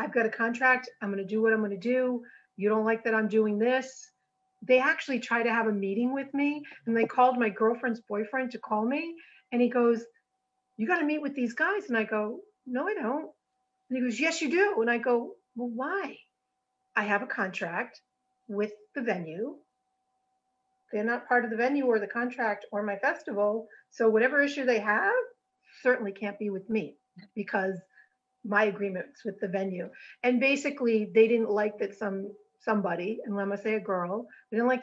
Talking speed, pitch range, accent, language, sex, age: 200 wpm, 205-255 Hz, American, English, female, 40-59